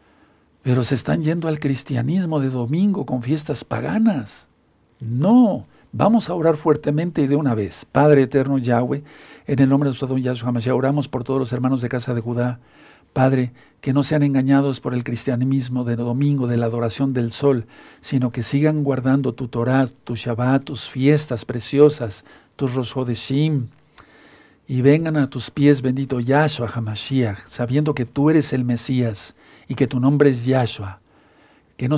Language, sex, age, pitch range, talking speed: Spanish, male, 60-79, 120-145 Hz, 170 wpm